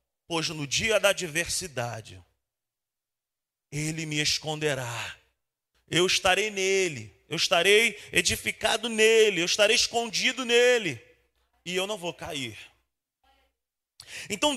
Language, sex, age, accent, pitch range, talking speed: Portuguese, male, 40-59, Brazilian, 150-240 Hz, 105 wpm